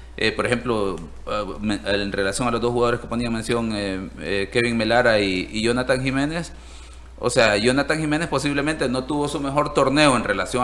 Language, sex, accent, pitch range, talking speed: Spanish, male, Venezuelan, 105-135 Hz, 180 wpm